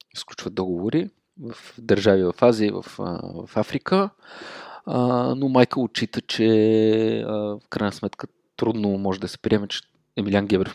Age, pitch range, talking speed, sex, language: 20-39, 95-110 Hz, 145 wpm, male, Bulgarian